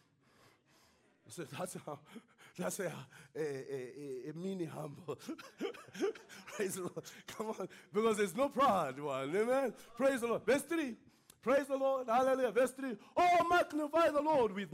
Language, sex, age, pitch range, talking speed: English, male, 30-49, 210-275 Hz, 160 wpm